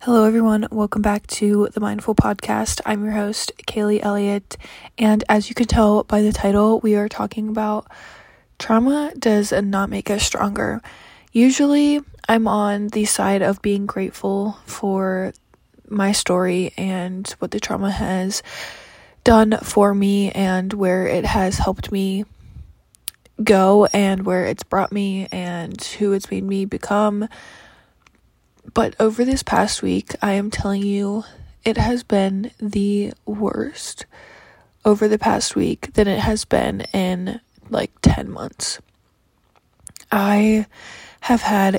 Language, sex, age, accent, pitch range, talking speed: English, female, 20-39, American, 195-215 Hz, 140 wpm